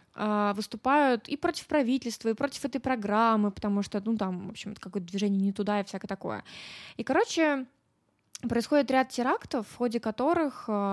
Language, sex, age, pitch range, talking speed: Russian, female, 20-39, 210-275 Hz, 160 wpm